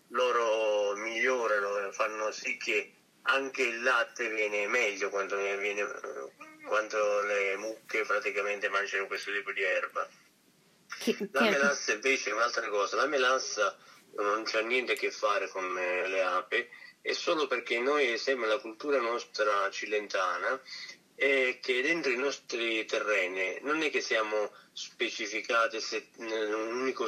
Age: 30-49